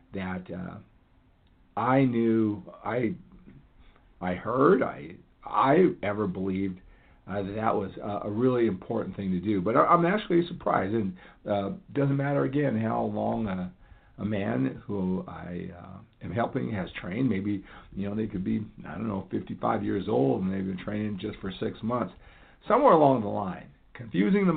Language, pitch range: English, 95-125 Hz